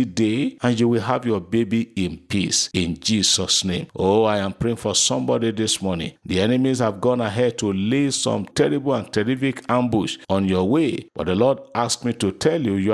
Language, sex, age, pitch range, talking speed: English, male, 50-69, 95-125 Hz, 205 wpm